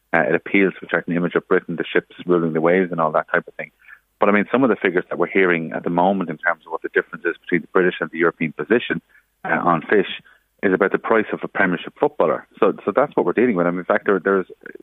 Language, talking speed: English, 285 wpm